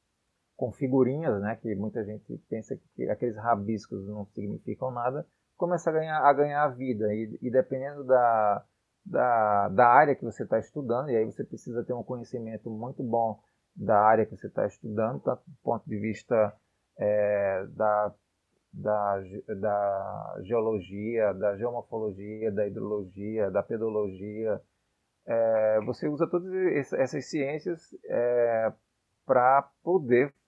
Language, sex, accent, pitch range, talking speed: Portuguese, male, Brazilian, 105-130 Hz, 125 wpm